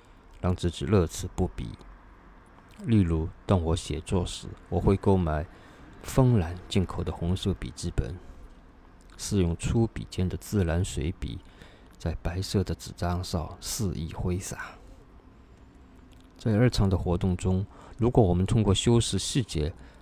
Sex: male